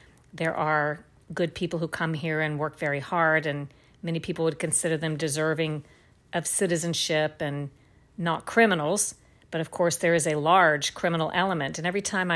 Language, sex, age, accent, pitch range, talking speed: English, female, 50-69, American, 150-180 Hz, 170 wpm